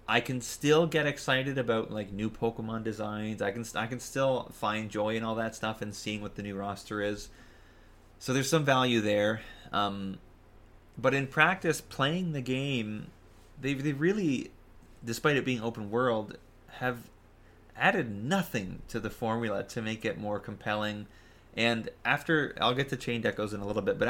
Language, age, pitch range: English, 20-39, 100-125 Hz